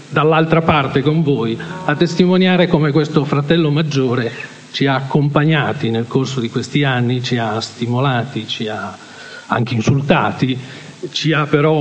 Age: 50-69